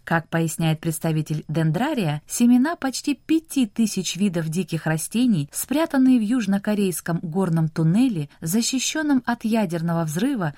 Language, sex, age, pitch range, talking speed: Russian, female, 20-39, 160-235 Hz, 115 wpm